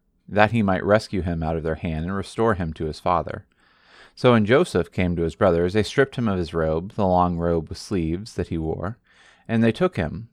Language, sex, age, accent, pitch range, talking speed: English, male, 30-49, American, 85-105 Hz, 230 wpm